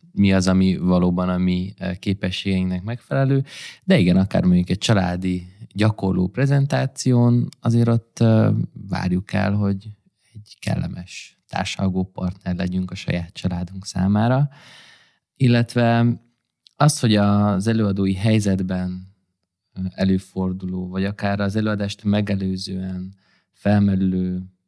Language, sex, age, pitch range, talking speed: Hungarian, male, 20-39, 95-110 Hz, 100 wpm